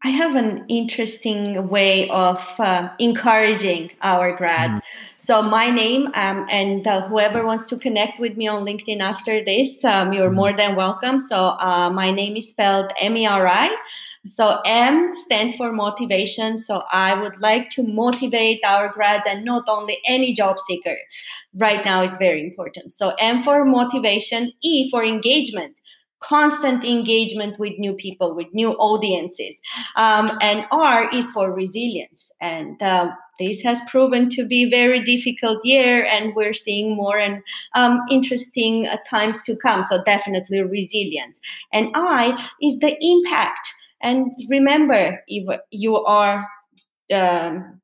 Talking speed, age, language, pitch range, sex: 150 wpm, 20-39, English, 200-245 Hz, female